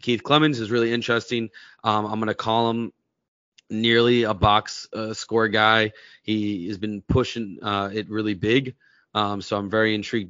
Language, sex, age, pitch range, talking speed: English, male, 20-39, 105-125 Hz, 175 wpm